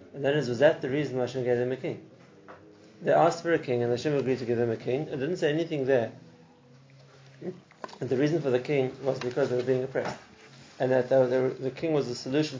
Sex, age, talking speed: male, 30-49, 240 wpm